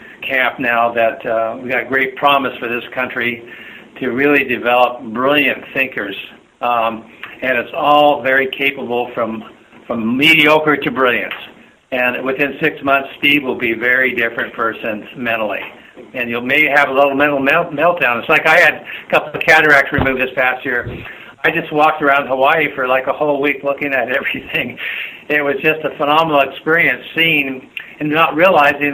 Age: 60-79